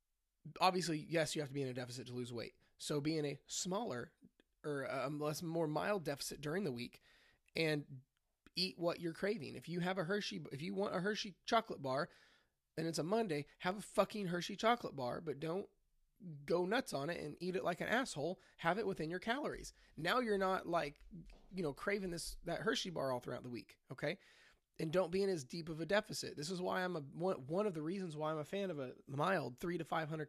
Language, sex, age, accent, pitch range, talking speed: English, male, 20-39, American, 145-190 Hz, 230 wpm